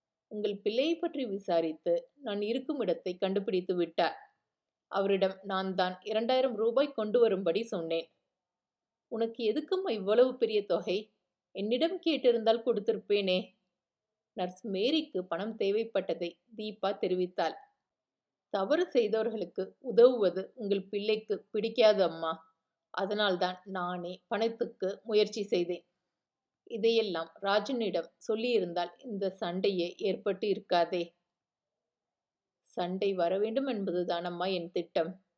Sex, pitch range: female, 180-225 Hz